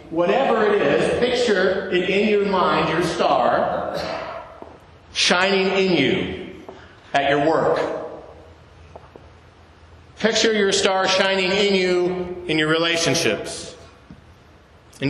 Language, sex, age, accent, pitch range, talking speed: English, male, 50-69, American, 155-215 Hz, 105 wpm